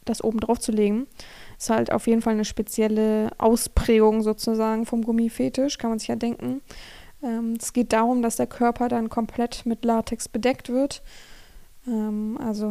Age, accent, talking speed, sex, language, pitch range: 20-39, German, 170 wpm, female, German, 220-245 Hz